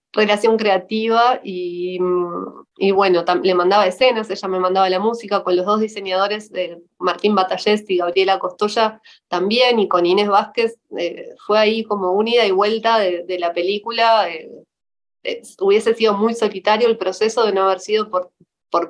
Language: Spanish